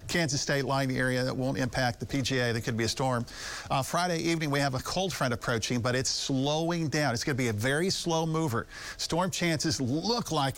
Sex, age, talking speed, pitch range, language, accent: male, 50-69, 220 wpm, 120-155 Hz, English, American